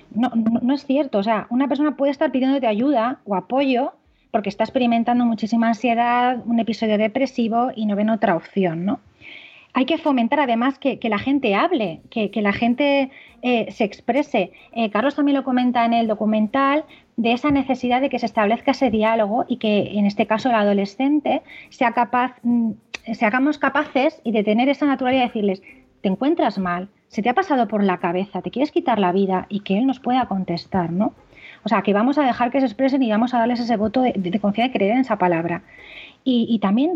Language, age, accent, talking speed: Spanish, 30-49, Spanish, 215 wpm